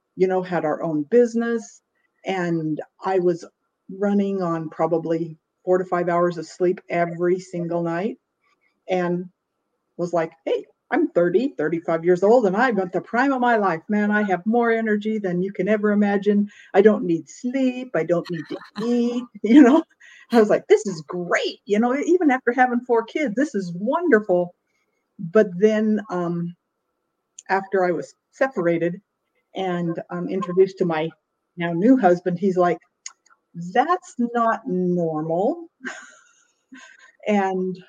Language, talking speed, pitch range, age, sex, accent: English, 150 wpm, 175-230 Hz, 50-69, female, American